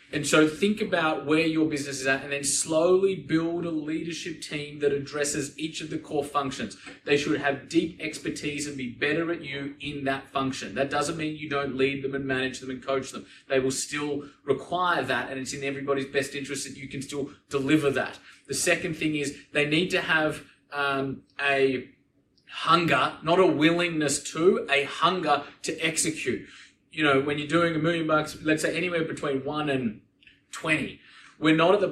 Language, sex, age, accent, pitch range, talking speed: English, male, 20-39, Australian, 130-155 Hz, 195 wpm